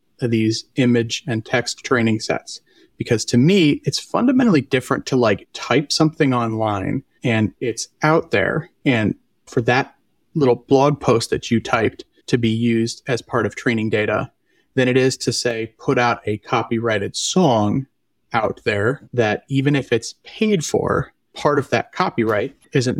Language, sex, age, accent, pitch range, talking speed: English, male, 30-49, American, 115-140 Hz, 160 wpm